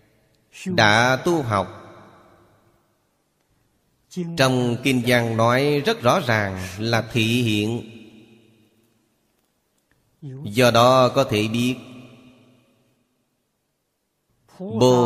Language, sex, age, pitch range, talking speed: Vietnamese, male, 30-49, 110-130 Hz, 75 wpm